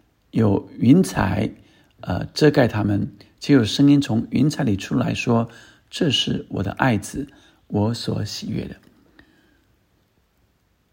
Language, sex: Chinese, male